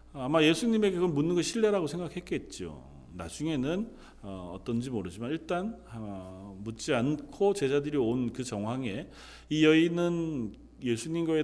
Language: Korean